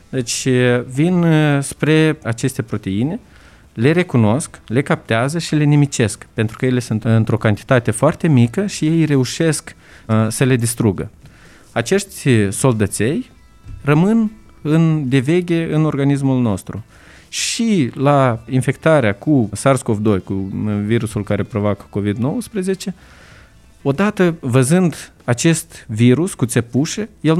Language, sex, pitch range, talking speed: Romanian, male, 115-155 Hz, 115 wpm